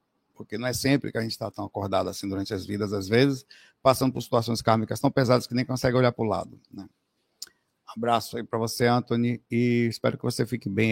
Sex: male